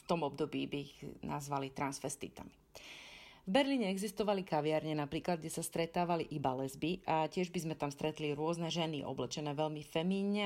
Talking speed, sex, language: 160 wpm, female, Slovak